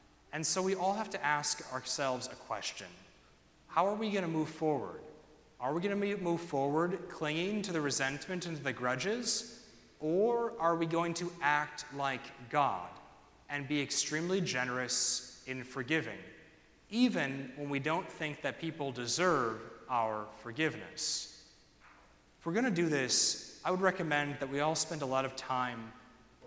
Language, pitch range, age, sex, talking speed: English, 130-160 Hz, 30-49, male, 160 wpm